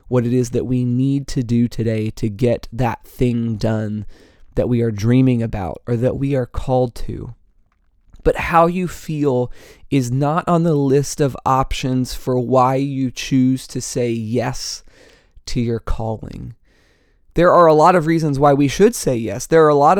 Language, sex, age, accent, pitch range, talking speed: English, male, 20-39, American, 115-150 Hz, 185 wpm